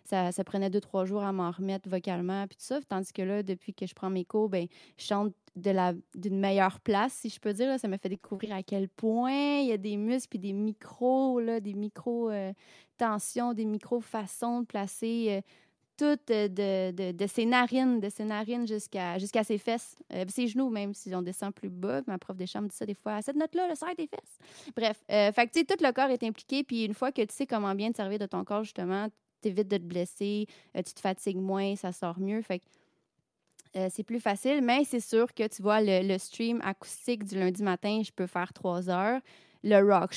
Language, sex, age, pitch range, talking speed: French, female, 30-49, 185-220 Hz, 235 wpm